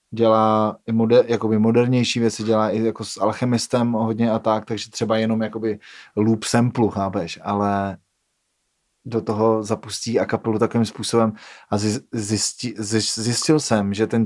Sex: male